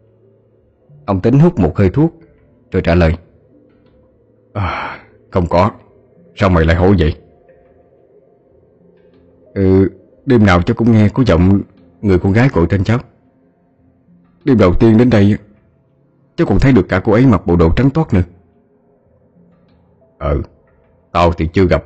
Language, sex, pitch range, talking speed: Vietnamese, male, 85-125 Hz, 145 wpm